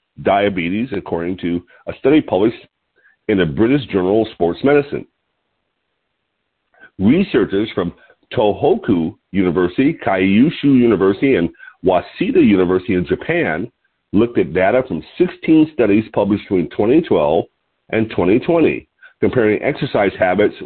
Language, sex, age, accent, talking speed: English, male, 50-69, American, 110 wpm